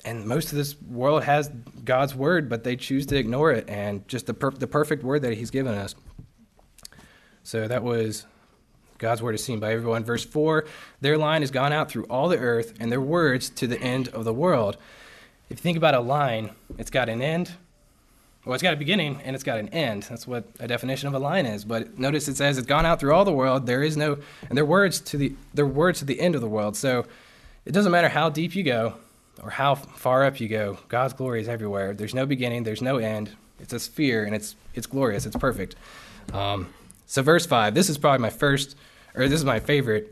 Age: 20-39